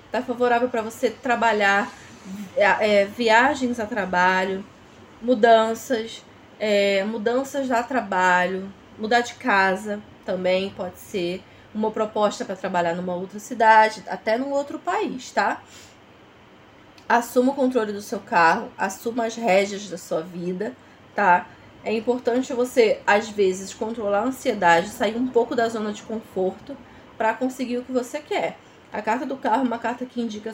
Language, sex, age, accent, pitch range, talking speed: Portuguese, female, 20-39, Brazilian, 195-245 Hz, 150 wpm